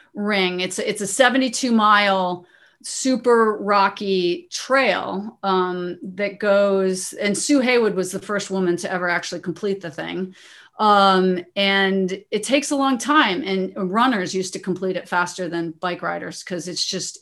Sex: female